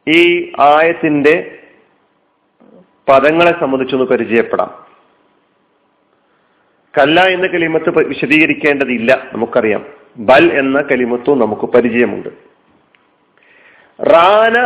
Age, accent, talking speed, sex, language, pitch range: 40-59, native, 55 wpm, male, Malayalam, 140-220 Hz